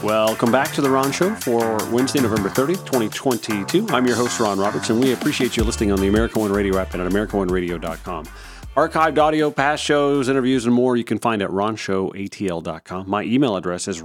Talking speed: 195 wpm